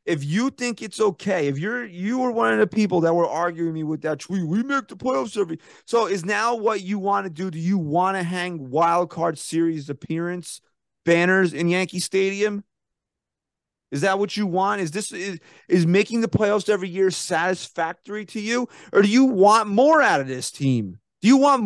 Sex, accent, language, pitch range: male, American, English, 170-220 Hz